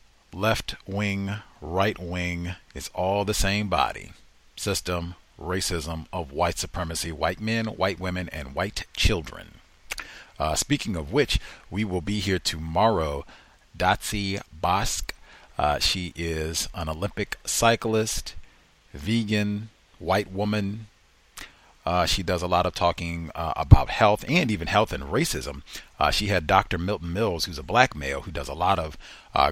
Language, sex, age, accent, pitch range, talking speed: English, male, 40-59, American, 85-105 Hz, 145 wpm